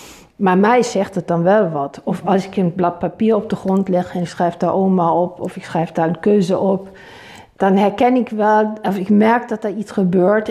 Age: 50-69